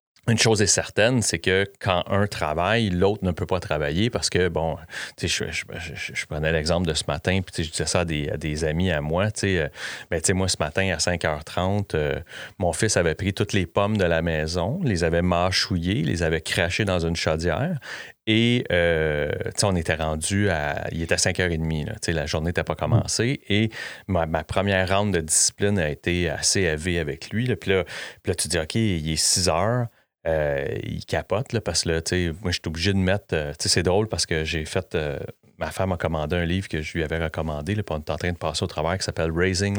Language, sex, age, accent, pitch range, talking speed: English, male, 30-49, Canadian, 80-100 Hz, 235 wpm